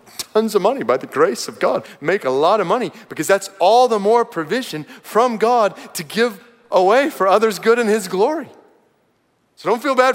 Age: 40-59